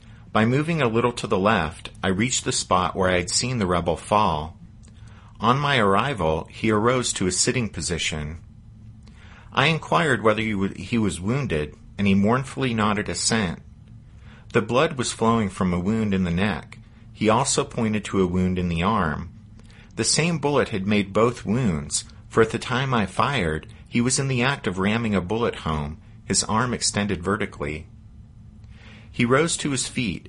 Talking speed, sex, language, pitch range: 175 wpm, male, English, 95-120 Hz